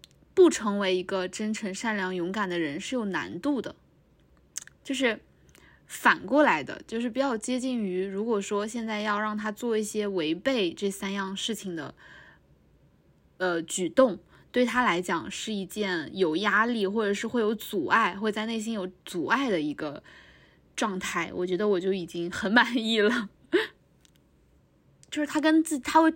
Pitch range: 185-245 Hz